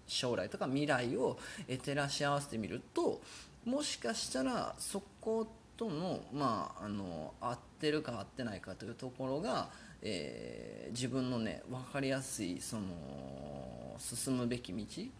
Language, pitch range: Japanese, 115-185 Hz